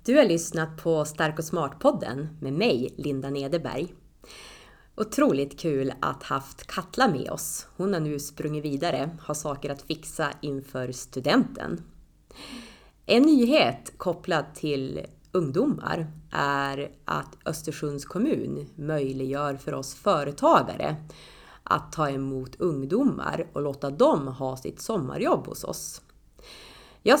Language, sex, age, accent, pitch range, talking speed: Swedish, female, 30-49, native, 135-165 Hz, 125 wpm